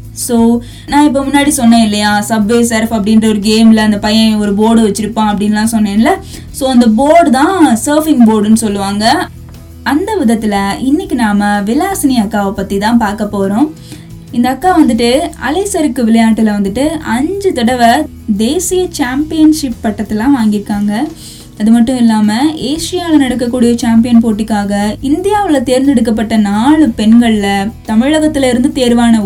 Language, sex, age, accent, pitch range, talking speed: Tamil, female, 20-39, native, 215-290 Hz, 130 wpm